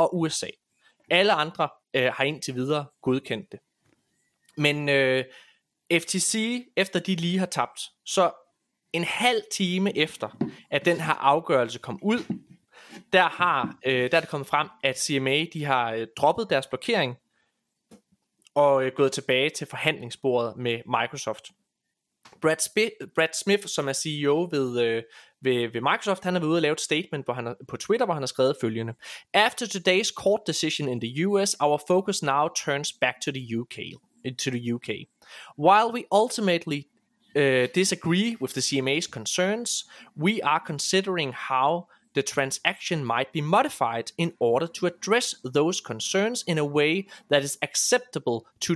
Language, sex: Danish, male